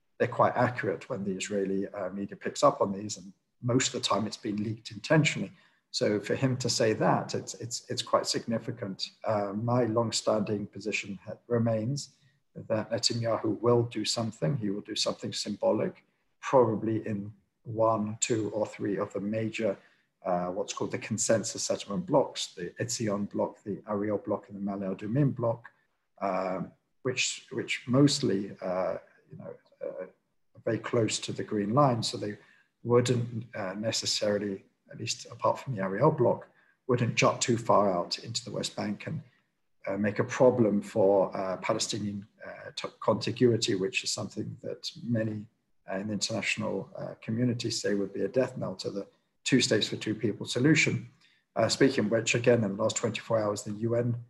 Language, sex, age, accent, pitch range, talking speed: English, male, 50-69, British, 105-120 Hz, 175 wpm